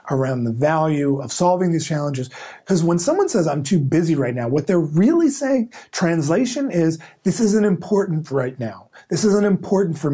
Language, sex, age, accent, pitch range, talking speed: English, male, 30-49, American, 145-205 Hz, 185 wpm